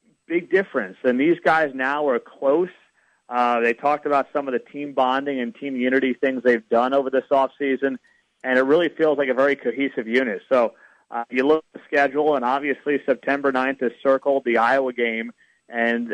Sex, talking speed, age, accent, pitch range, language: male, 195 wpm, 30-49, American, 125-150 Hz, English